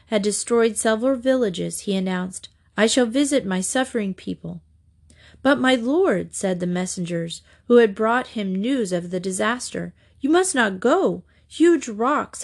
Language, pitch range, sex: English, 185-255 Hz, female